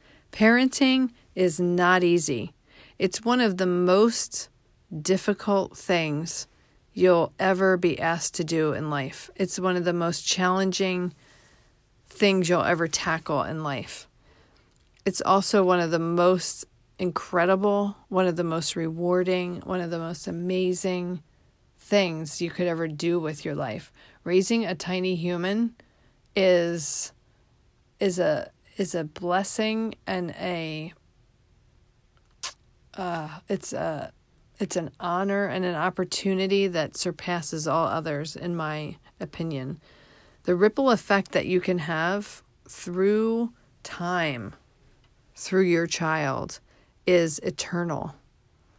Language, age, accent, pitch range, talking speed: English, 40-59, American, 165-190 Hz, 120 wpm